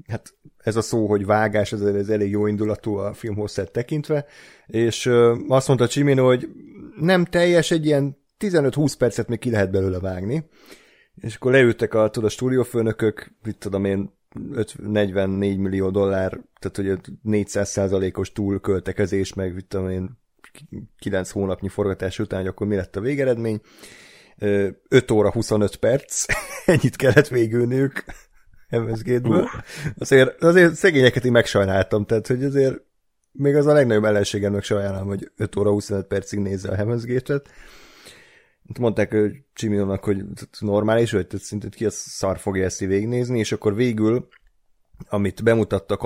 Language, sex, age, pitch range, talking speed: Hungarian, male, 30-49, 100-120 Hz, 140 wpm